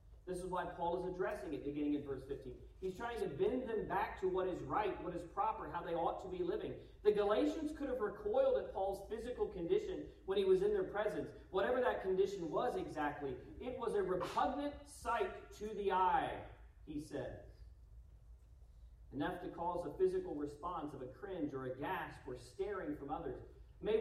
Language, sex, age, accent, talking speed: English, male, 40-59, American, 190 wpm